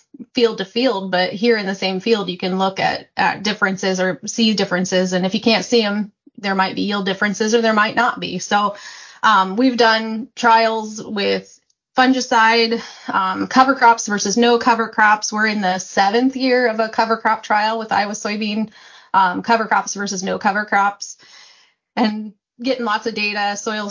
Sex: female